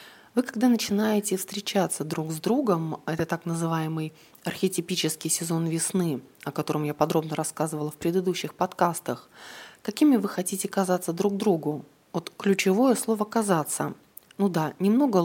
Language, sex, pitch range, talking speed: Russian, female, 155-210 Hz, 135 wpm